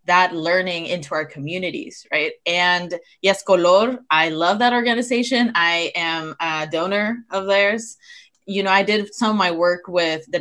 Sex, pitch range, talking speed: female, 165-210 Hz, 165 wpm